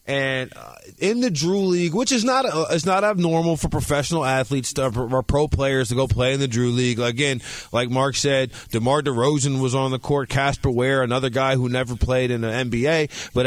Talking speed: 205 wpm